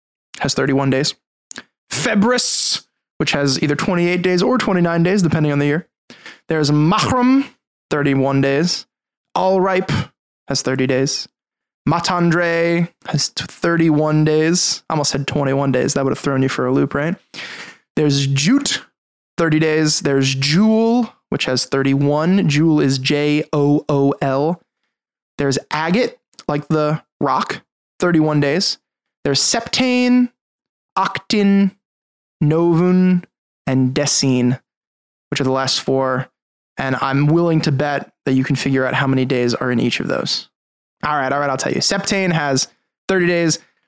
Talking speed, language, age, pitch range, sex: 145 wpm, English, 20-39, 140-190 Hz, male